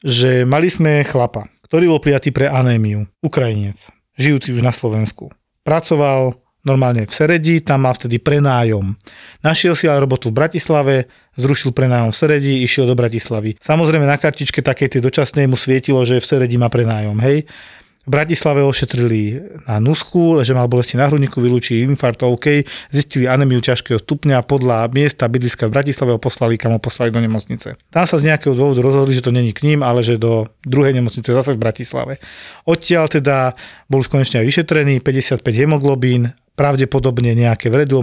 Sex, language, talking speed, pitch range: male, Slovak, 170 wpm, 125-150 Hz